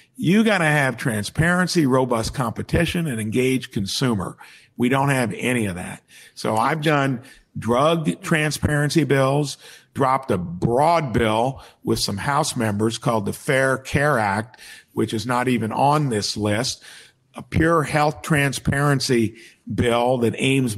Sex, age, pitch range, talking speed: male, 50-69, 120-150 Hz, 140 wpm